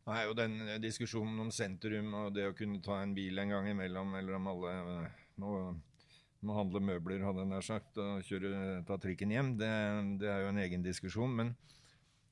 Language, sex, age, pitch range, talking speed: English, male, 50-69, 100-140 Hz, 190 wpm